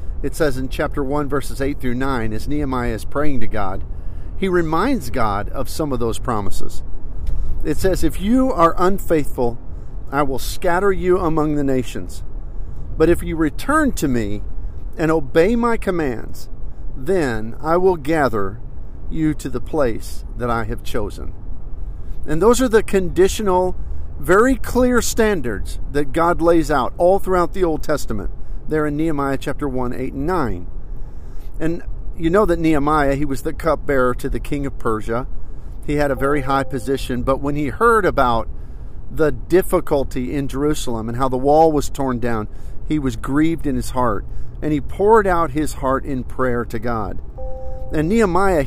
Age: 50-69